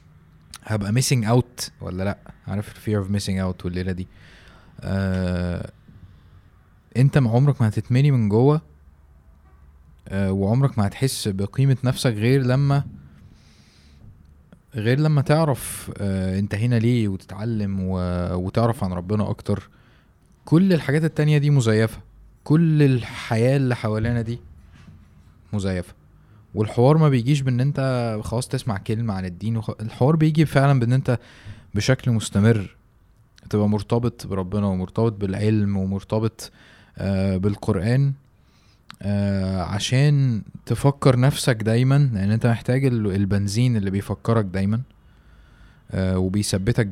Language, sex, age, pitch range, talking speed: Arabic, male, 20-39, 95-125 Hz, 115 wpm